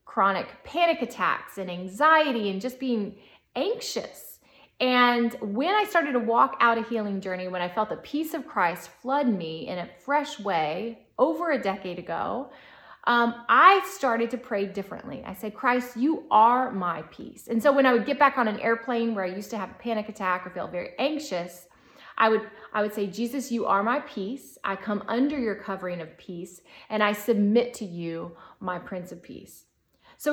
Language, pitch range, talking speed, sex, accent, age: English, 195-265 Hz, 190 wpm, female, American, 30-49